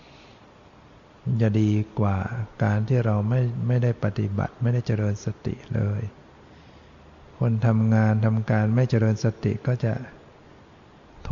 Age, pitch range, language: 60-79, 110-125 Hz, Thai